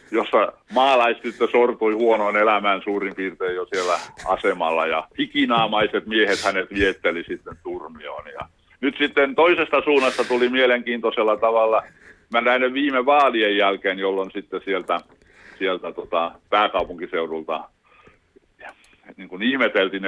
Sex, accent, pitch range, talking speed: male, native, 100-135 Hz, 120 wpm